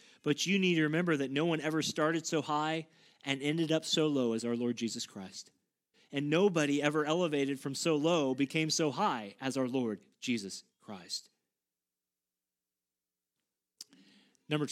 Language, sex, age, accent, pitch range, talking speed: English, male, 30-49, American, 125-160 Hz, 155 wpm